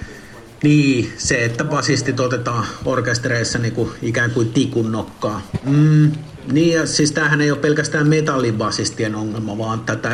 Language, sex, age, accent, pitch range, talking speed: Finnish, male, 50-69, native, 120-155 Hz, 130 wpm